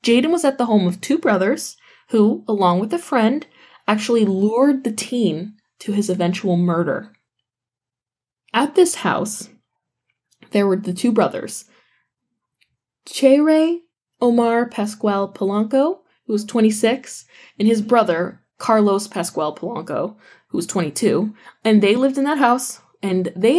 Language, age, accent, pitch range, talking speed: English, 10-29, American, 190-255 Hz, 135 wpm